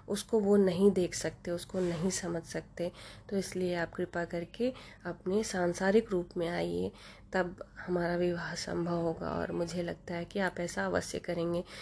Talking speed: 170 wpm